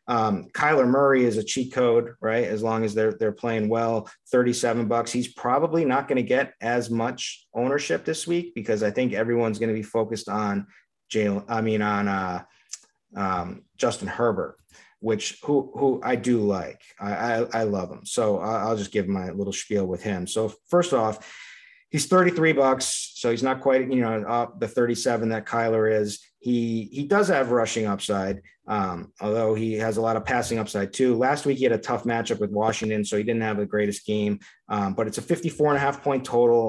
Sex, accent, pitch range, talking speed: male, American, 110-130 Hz, 205 wpm